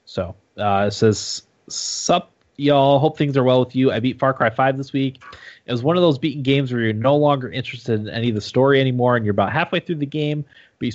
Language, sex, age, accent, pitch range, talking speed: English, male, 20-39, American, 105-135 Hz, 250 wpm